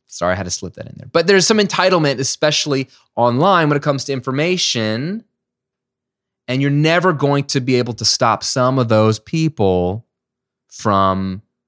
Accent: American